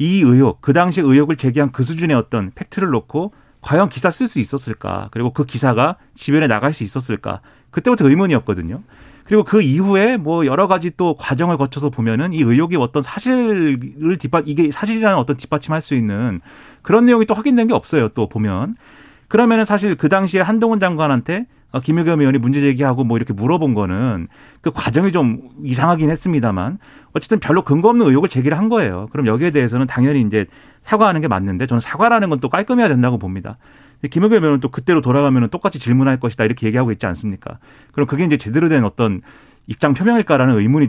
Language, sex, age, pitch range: Korean, male, 40-59, 120-170 Hz